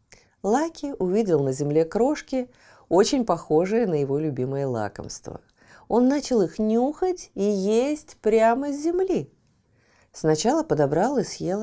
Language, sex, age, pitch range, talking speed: Russian, female, 40-59, 155-240 Hz, 125 wpm